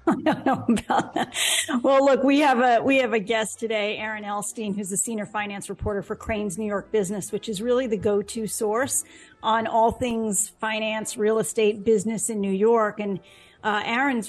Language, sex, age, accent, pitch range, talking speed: English, female, 40-59, American, 205-240 Hz, 195 wpm